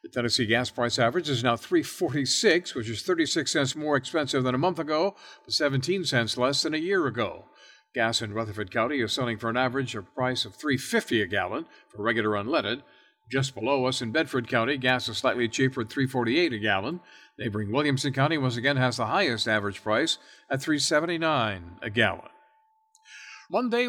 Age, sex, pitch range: 50-69, male, 115-160 Hz